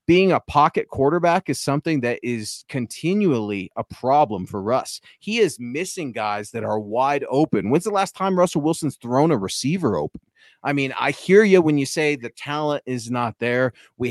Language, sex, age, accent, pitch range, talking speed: English, male, 30-49, American, 125-165 Hz, 190 wpm